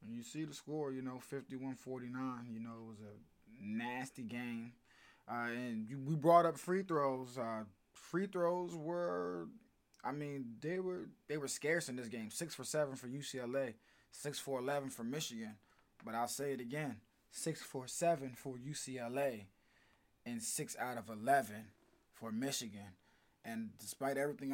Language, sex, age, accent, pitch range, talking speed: English, male, 20-39, American, 115-145 Hz, 160 wpm